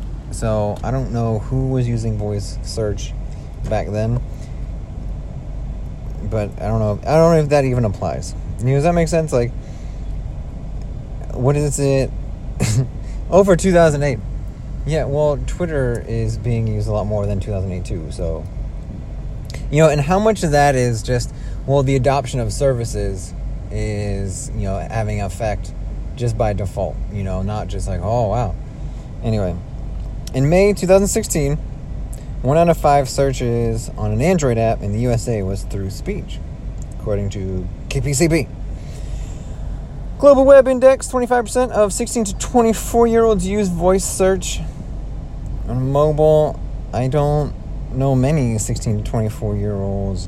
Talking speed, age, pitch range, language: 145 wpm, 30-49, 95-140 Hz, English